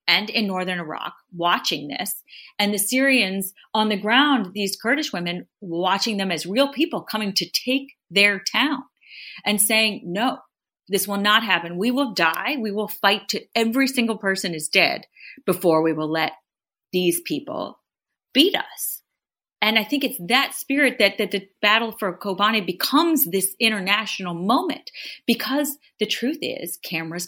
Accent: American